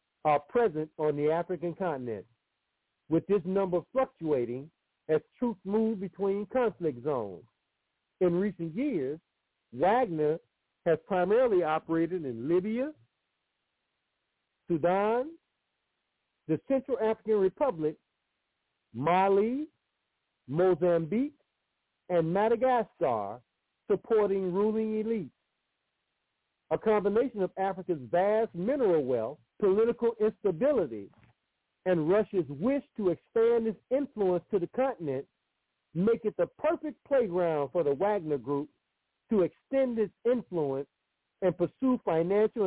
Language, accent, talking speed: English, American, 100 wpm